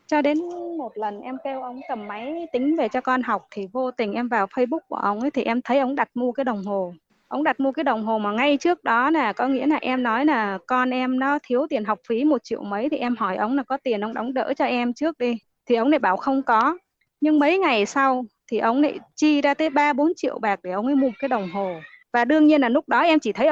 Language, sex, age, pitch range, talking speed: Vietnamese, female, 20-39, 225-290 Hz, 280 wpm